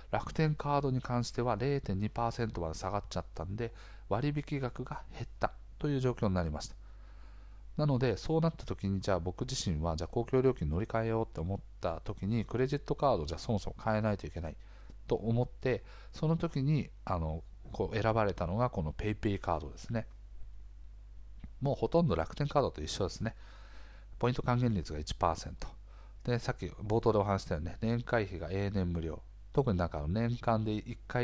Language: Japanese